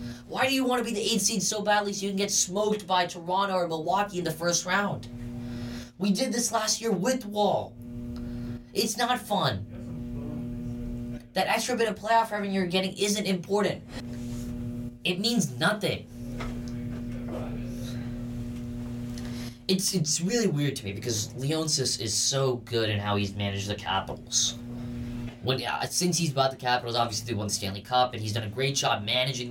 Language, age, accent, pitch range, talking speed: English, 10-29, American, 120-160 Hz, 170 wpm